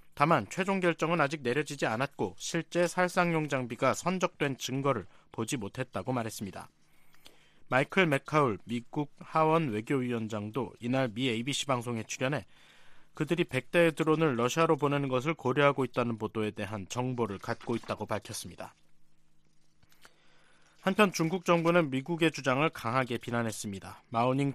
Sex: male